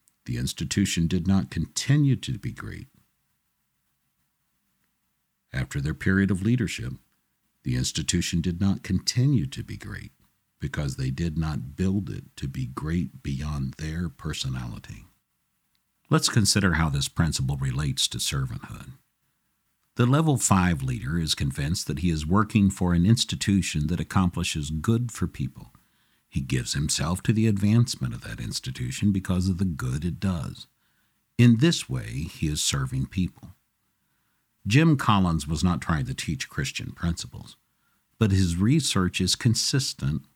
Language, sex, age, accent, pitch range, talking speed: English, male, 60-79, American, 80-115 Hz, 140 wpm